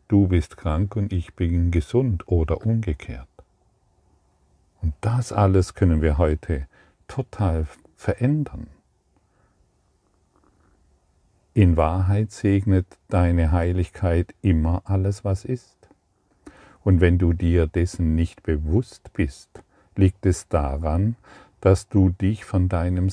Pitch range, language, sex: 85-100 Hz, German, male